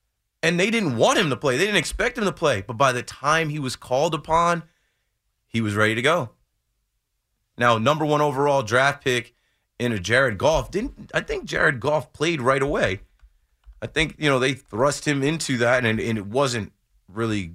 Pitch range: 110-145 Hz